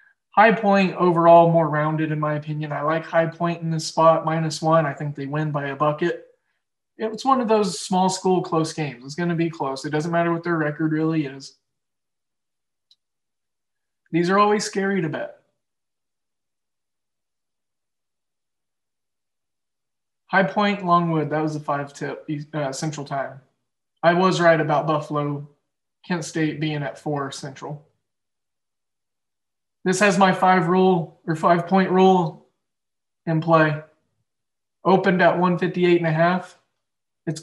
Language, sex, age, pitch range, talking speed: English, male, 20-39, 150-180 Hz, 145 wpm